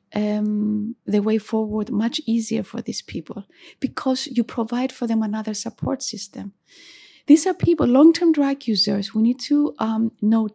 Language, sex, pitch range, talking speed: English, female, 215-270 Hz, 160 wpm